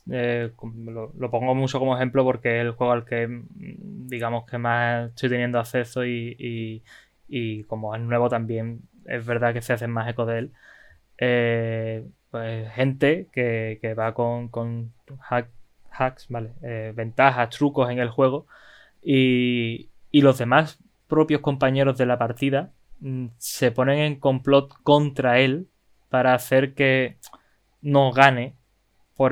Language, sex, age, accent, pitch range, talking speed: Spanish, male, 20-39, Spanish, 115-135 Hz, 150 wpm